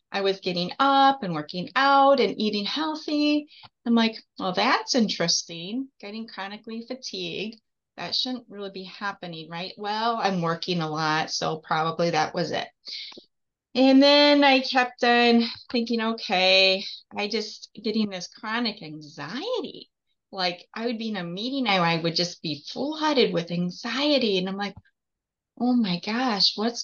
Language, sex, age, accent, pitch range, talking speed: English, female, 30-49, American, 185-255 Hz, 150 wpm